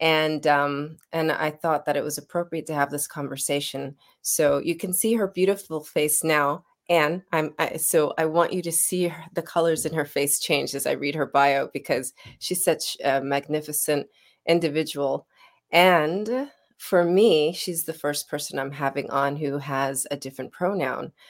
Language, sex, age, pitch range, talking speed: English, female, 30-49, 140-170 Hz, 180 wpm